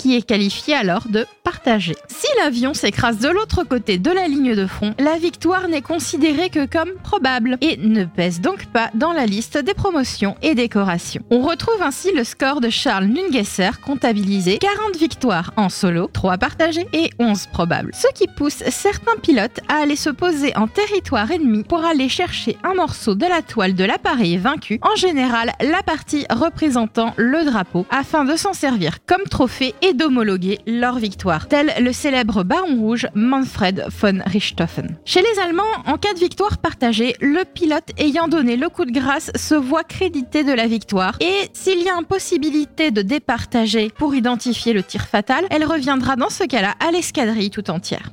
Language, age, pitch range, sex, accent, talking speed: French, 30-49, 225-330 Hz, female, French, 180 wpm